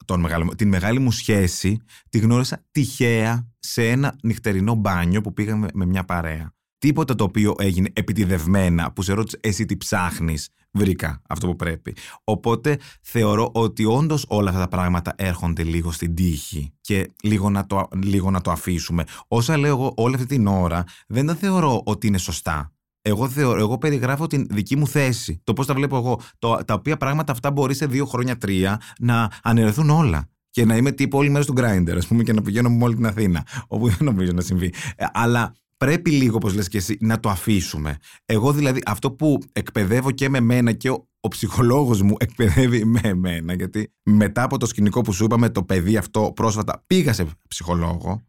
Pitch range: 95-120 Hz